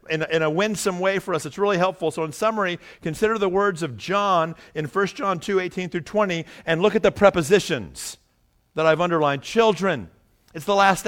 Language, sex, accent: English, male, American